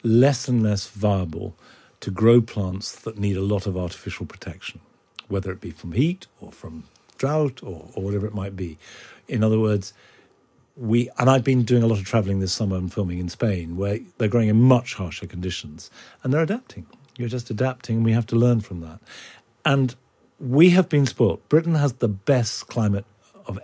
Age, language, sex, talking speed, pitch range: 50-69, English, male, 195 wpm, 100-140 Hz